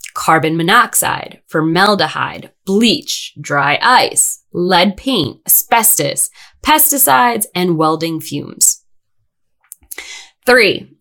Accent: American